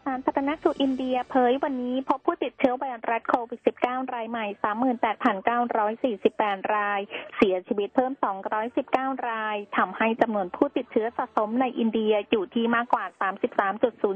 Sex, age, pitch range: female, 20-39, 215-265 Hz